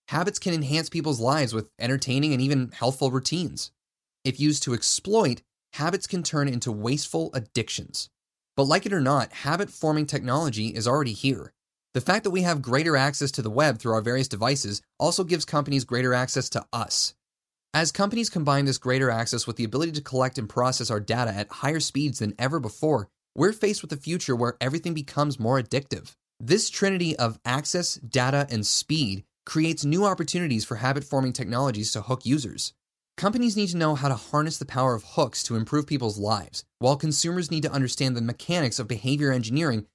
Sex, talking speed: male, 185 wpm